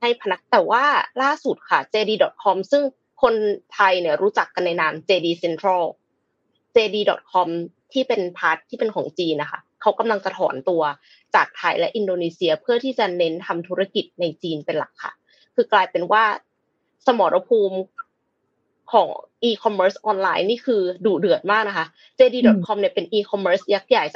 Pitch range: 185-245 Hz